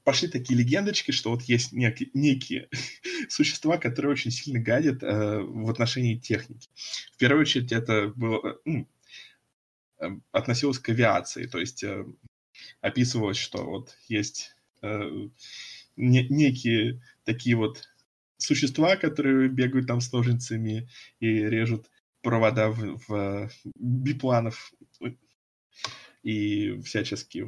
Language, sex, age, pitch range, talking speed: Russian, male, 20-39, 105-130 Hz, 110 wpm